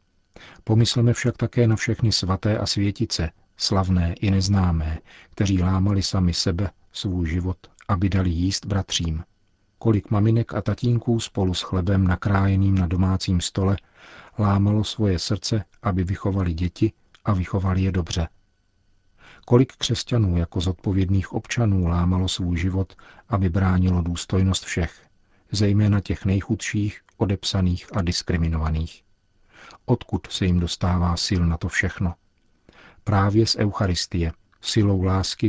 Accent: native